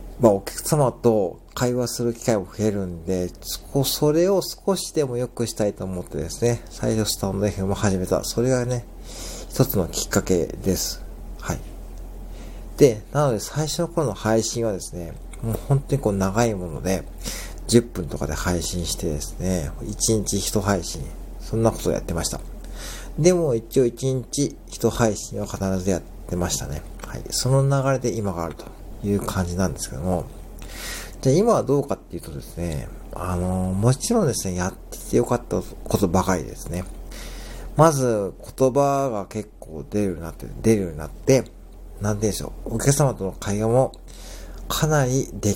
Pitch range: 90-125 Hz